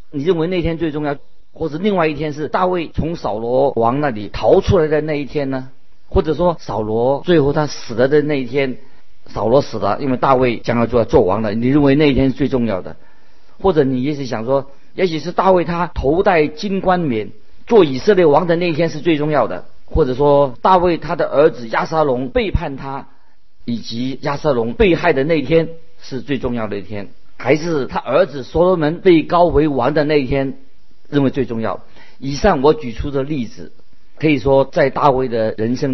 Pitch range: 120-160 Hz